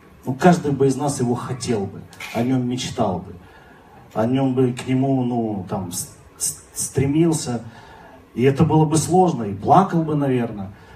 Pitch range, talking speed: 115-150 Hz, 170 wpm